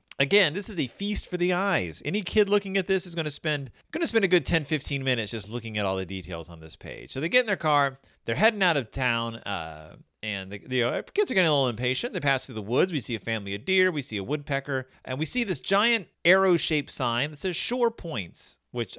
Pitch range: 110-165 Hz